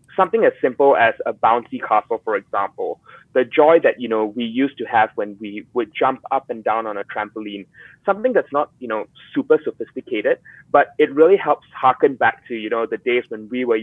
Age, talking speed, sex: 20-39, 215 wpm, male